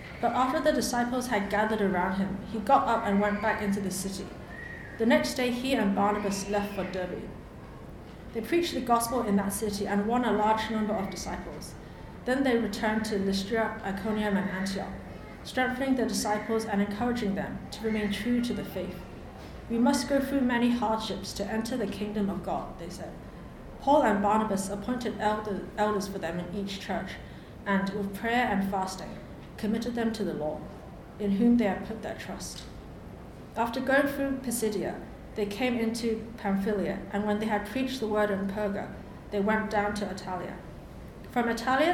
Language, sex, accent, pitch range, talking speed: English, female, British, 200-230 Hz, 180 wpm